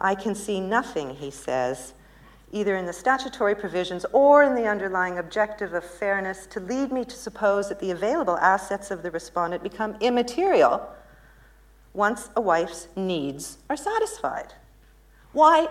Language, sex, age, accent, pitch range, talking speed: English, female, 50-69, American, 155-215 Hz, 150 wpm